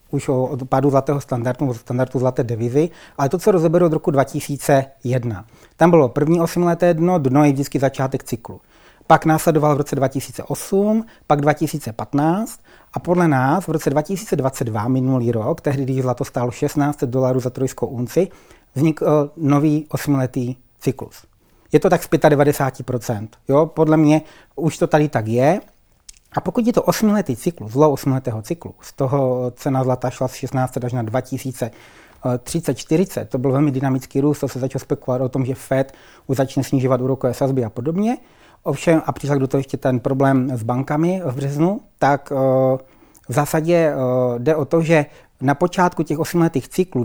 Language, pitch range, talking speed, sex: Czech, 130-155 Hz, 165 wpm, male